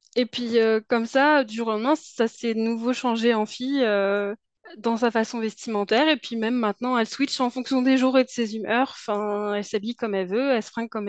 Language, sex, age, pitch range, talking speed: French, female, 20-39, 205-260 Hz, 240 wpm